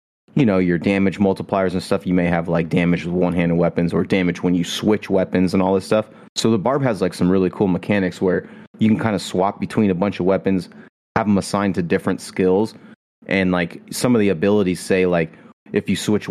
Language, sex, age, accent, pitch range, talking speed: English, male, 30-49, American, 85-95 Hz, 230 wpm